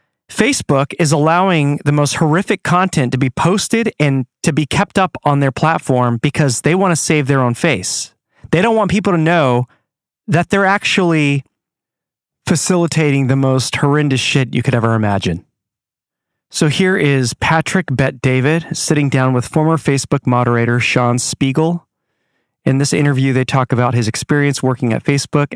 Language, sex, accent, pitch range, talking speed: English, male, American, 115-145 Hz, 160 wpm